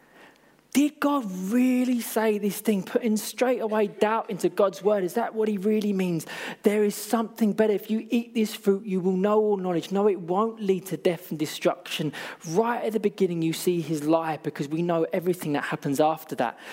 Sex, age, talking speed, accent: male, 20-39, 205 wpm, British